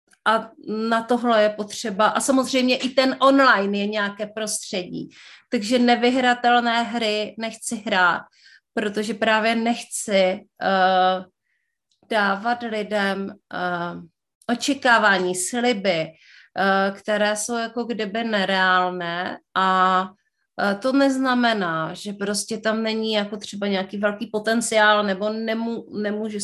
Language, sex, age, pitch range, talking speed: Czech, female, 30-49, 195-230 Hz, 100 wpm